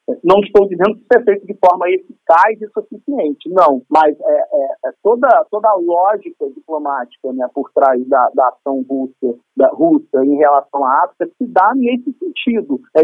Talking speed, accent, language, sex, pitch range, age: 185 wpm, Brazilian, Portuguese, male, 165-275 Hz, 40-59